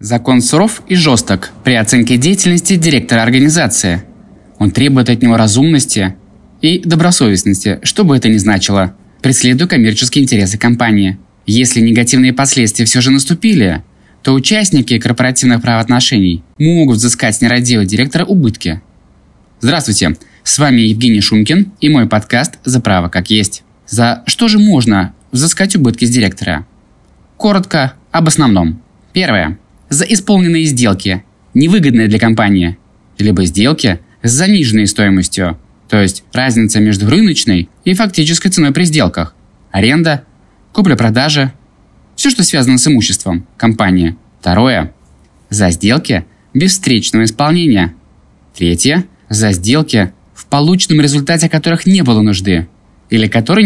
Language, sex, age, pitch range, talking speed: Russian, male, 20-39, 100-145 Hz, 125 wpm